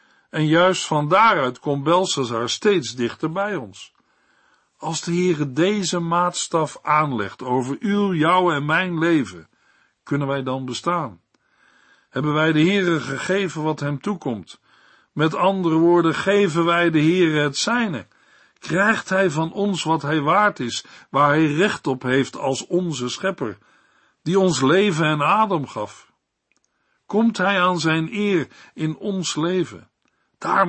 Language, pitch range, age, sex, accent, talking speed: Dutch, 140-180 Hz, 60-79, male, Dutch, 145 wpm